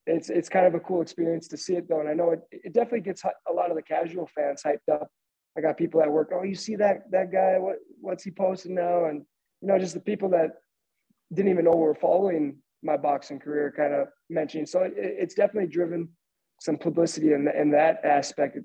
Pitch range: 145-170 Hz